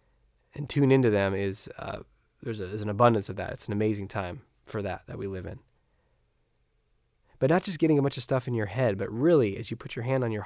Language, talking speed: English, 245 wpm